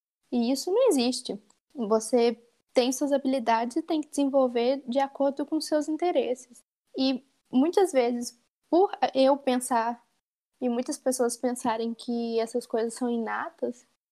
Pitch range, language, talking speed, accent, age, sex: 235-275 Hz, Portuguese, 135 wpm, Brazilian, 10-29, female